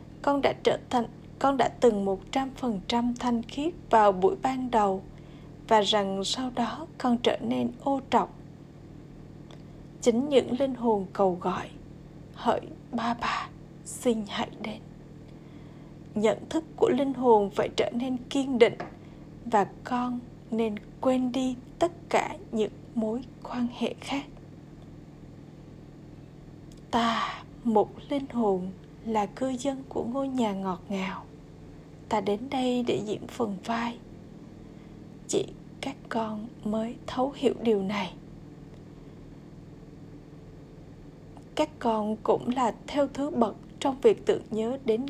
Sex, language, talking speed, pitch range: female, Vietnamese, 130 wpm, 160-245 Hz